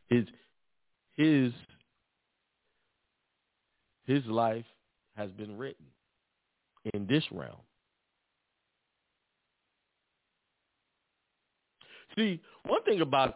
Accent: American